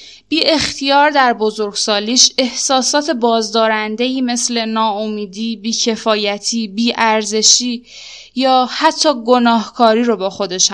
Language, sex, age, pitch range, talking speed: Persian, female, 10-29, 215-265 Hz, 95 wpm